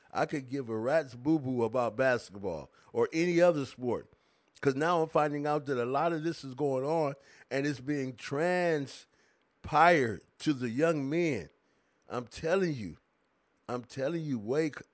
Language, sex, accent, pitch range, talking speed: English, male, American, 150-200 Hz, 165 wpm